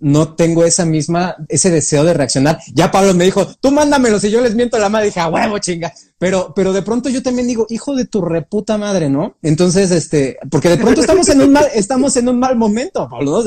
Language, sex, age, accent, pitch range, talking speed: Spanish, male, 30-49, Mexican, 165-220 Hz, 230 wpm